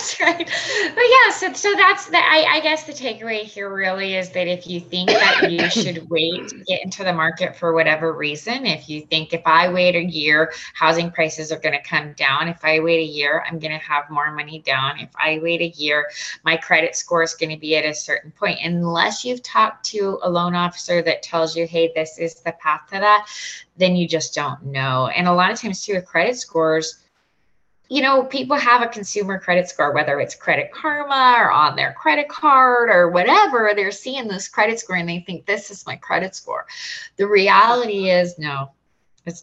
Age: 20-39